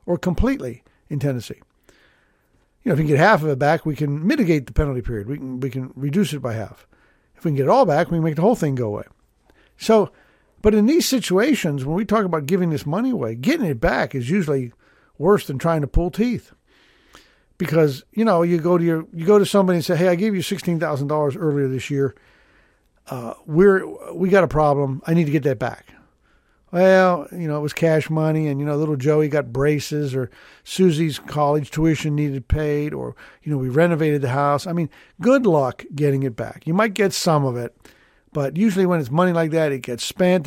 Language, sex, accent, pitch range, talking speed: English, male, American, 140-175 Hz, 220 wpm